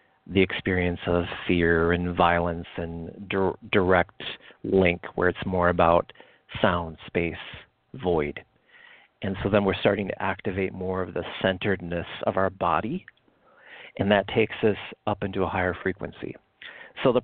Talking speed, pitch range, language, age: 145 wpm, 90-100 Hz, English, 40-59